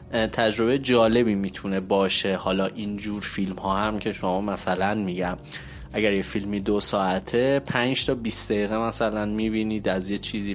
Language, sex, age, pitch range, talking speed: Persian, male, 20-39, 110-140 Hz, 160 wpm